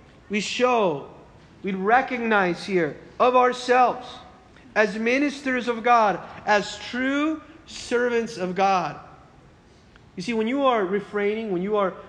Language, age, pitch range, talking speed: English, 30-49, 195-255 Hz, 125 wpm